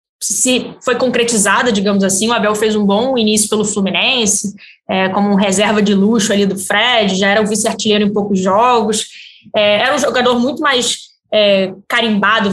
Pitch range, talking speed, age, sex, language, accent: 205-245 Hz, 180 wpm, 20-39, female, Portuguese, Brazilian